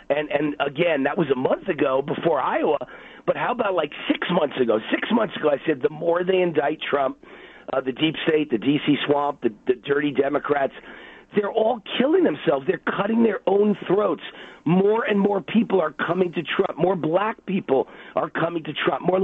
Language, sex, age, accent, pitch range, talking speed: English, male, 50-69, American, 145-195 Hz, 195 wpm